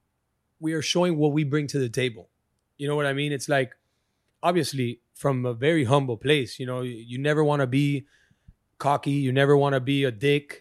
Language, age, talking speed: English, 30-49, 210 wpm